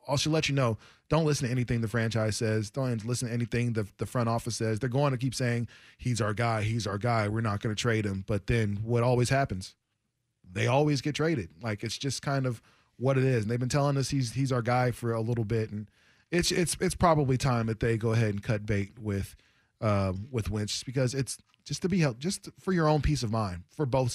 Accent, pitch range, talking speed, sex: American, 115-140 Hz, 250 wpm, male